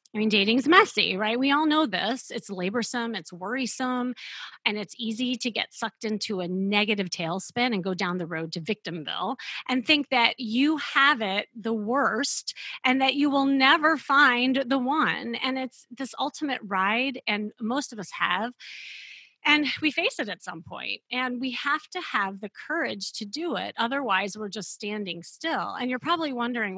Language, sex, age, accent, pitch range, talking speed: English, female, 30-49, American, 190-260 Hz, 185 wpm